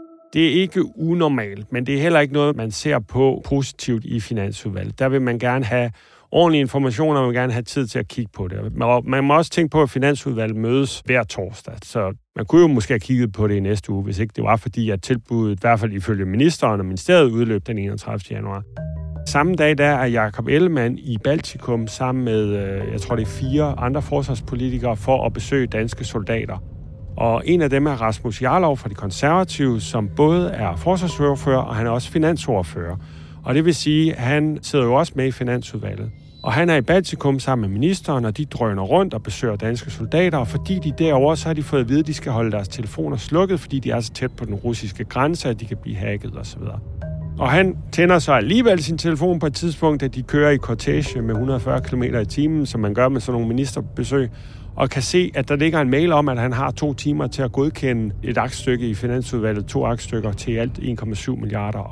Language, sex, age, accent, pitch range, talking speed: Danish, male, 40-59, native, 110-145 Hz, 220 wpm